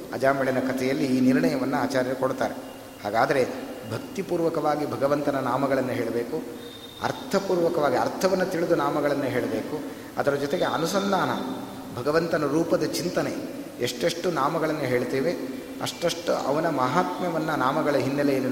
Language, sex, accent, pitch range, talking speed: Kannada, male, native, 130-165 Hz, 95 wpm